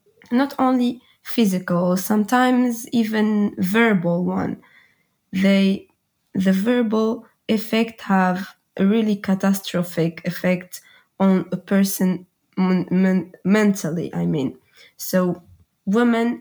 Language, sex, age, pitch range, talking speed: English, female, 20-39, 185-225 Hz, 90 wpm